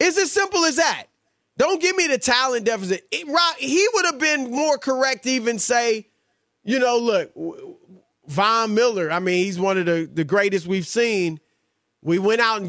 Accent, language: American, English